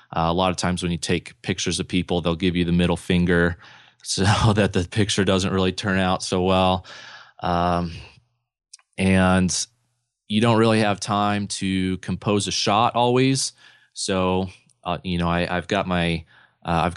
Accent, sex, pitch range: American, male, 90-105 Hz